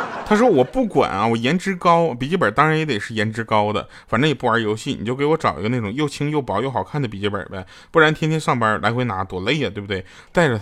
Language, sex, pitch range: Chinese, male, 105-175 Hz